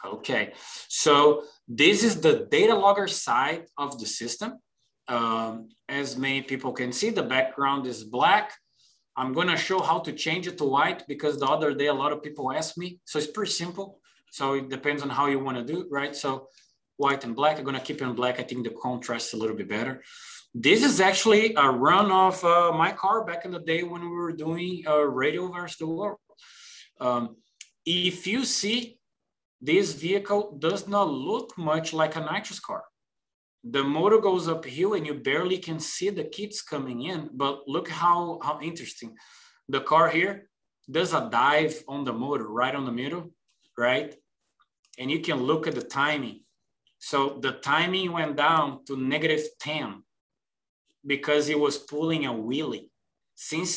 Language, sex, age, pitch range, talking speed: English, male, 20-39, 135-180 Hz, 180 wpm